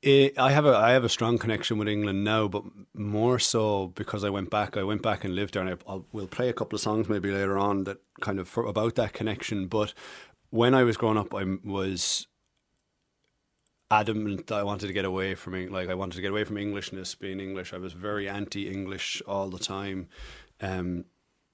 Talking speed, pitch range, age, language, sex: 220 wpm, 90-105 Hz, 30-49, English, male